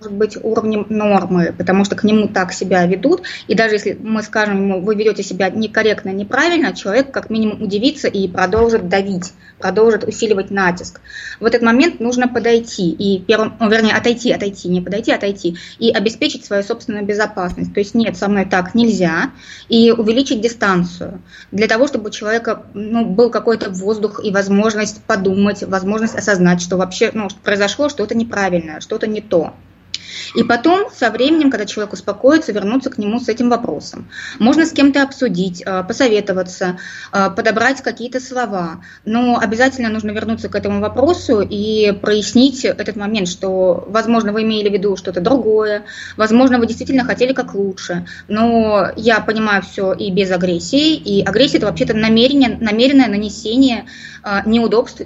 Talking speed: 155 wpm